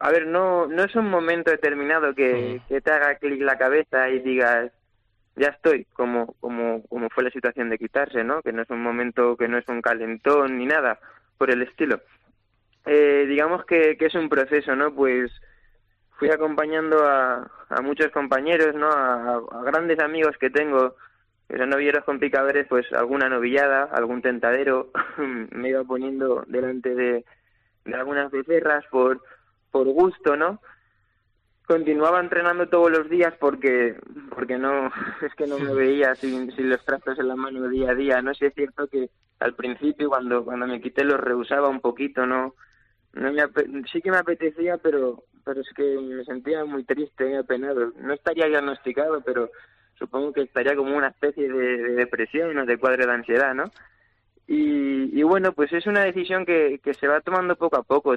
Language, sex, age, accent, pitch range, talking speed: Spanish, male, 20-39, Spanish, 125-150 Hz, 185 wpm